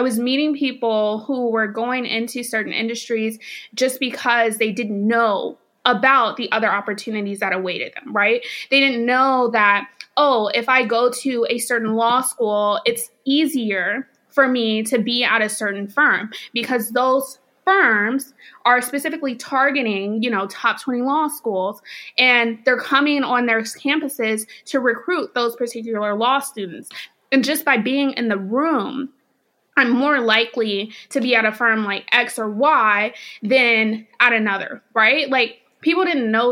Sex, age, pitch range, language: female, 20-39, 220-265 Hz, English